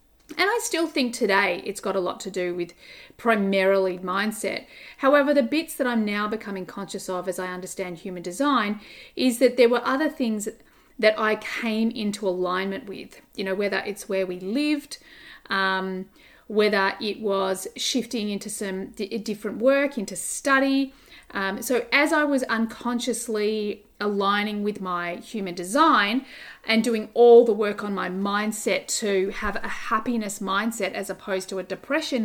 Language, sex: English, female